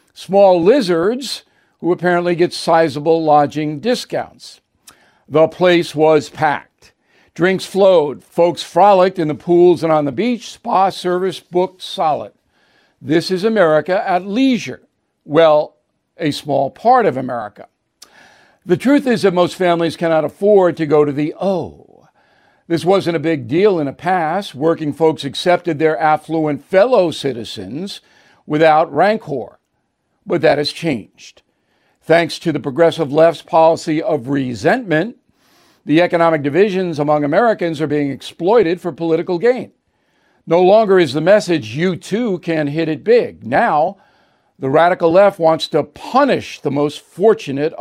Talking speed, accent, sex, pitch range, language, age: 140 wpm, American, male, 150-185 Hz, English, 60-79